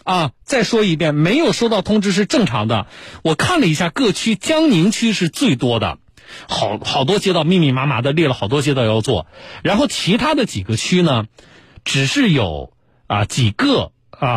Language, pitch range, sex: Chinese, 115-165 Hz, male